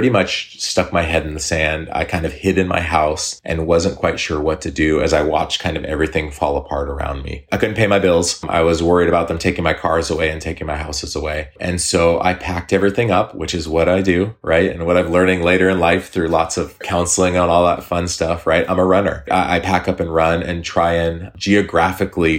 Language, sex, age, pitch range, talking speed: English, male, 30-49, 80-95 Hz, 245 wpm